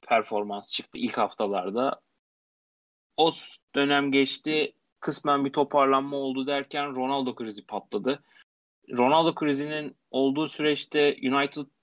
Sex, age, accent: male, 30-49, native